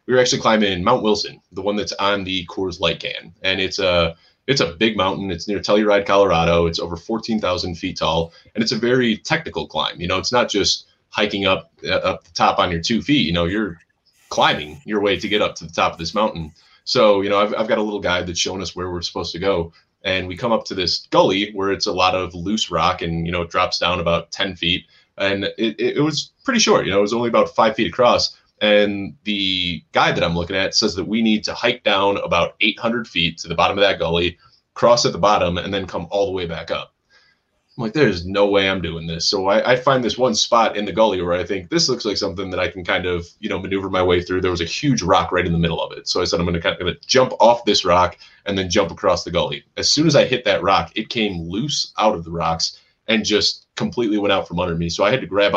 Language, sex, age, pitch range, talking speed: English, male, 20-39, 85-105 Hz, 270 wpm